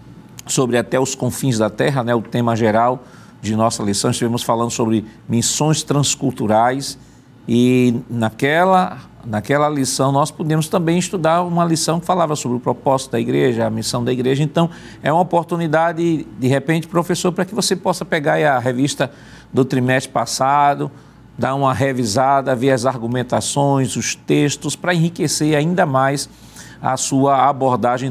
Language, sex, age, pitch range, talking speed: Portuguese, male, 50-69, 120-155 Hz, 155 wpm